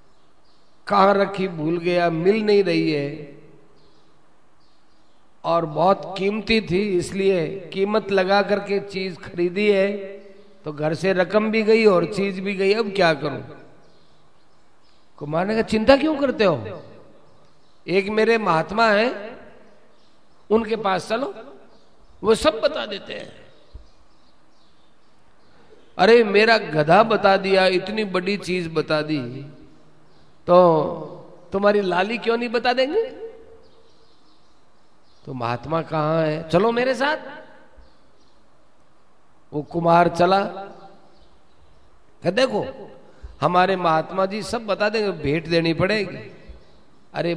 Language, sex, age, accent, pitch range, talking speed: Hindi, male, 50-69, native, 170-210 Hz, 115 wpm